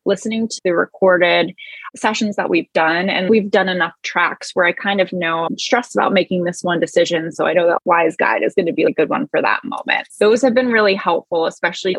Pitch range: 170-220 Hz